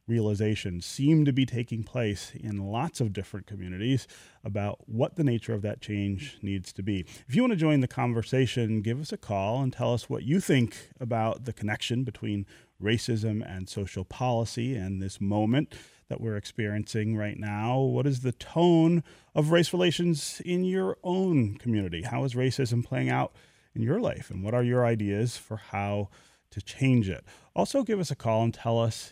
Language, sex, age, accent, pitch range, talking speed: English, male, 30-49, American, 105-135 Hz, 190 wpm